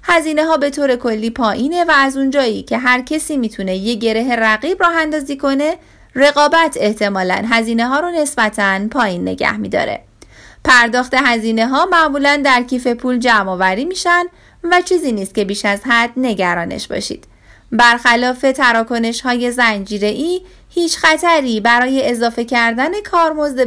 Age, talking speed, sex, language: 30-49, 145 wpm, female, Persian